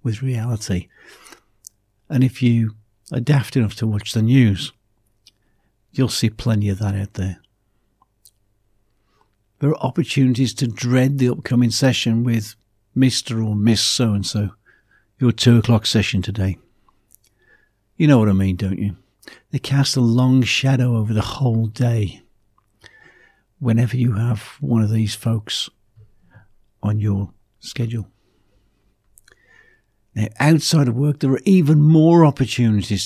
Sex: male